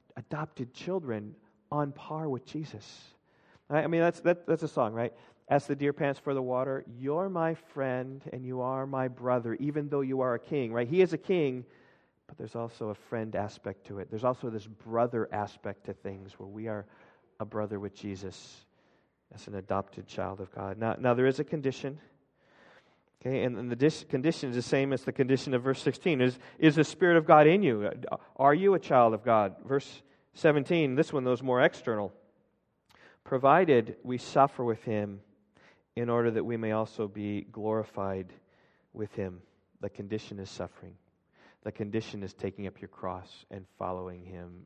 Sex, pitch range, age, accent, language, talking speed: male, 100-140 Hz, 40-59, American, English, 185 wpm